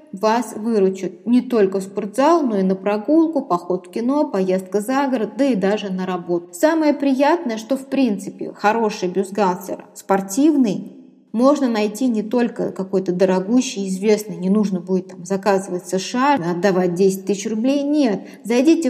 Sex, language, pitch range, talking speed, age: female, Russian, 200-255 Hz, 155 wpm, 20-39